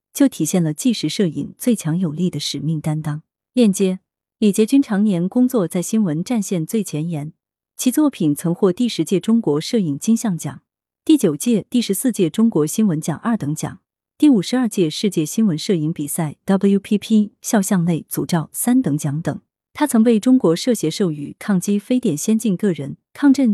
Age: 30-49